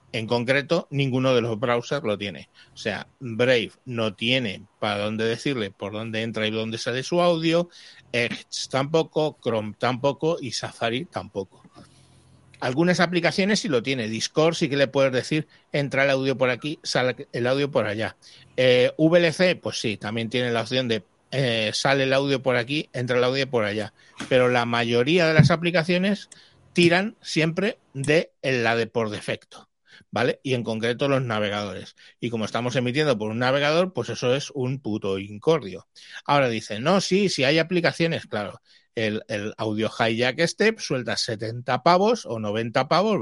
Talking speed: 170 wpm